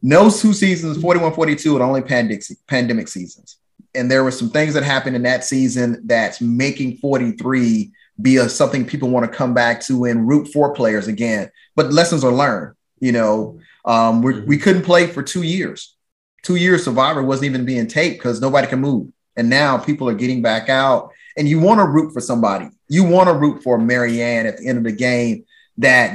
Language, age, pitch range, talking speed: English, 30-49, 125-160 Hz, 205 wpm